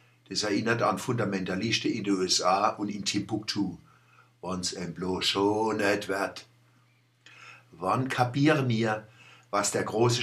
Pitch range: 100-130 Hz